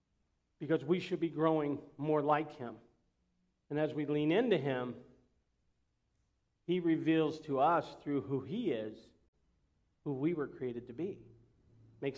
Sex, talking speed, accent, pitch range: male, 145 wpm, American, 130-160 Hz